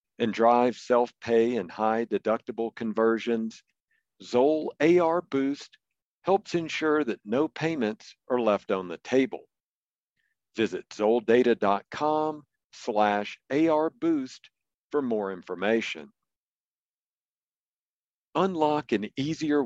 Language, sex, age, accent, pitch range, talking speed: English, male, 50-69, American, 115-150 Hz, 90 wpm